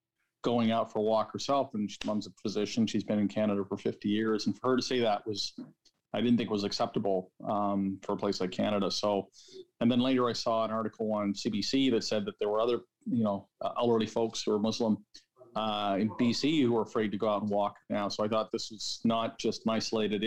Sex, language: male, English